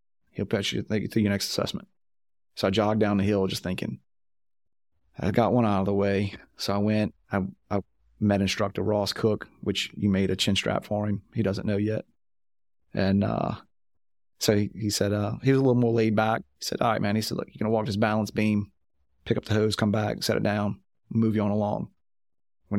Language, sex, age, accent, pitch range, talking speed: English, male, 30-49, American, 100-115 Hz, 225 wpm